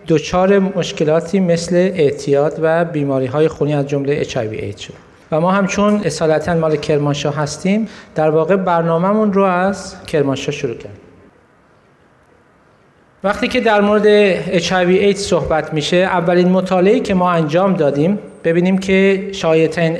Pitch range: 160-200 Hz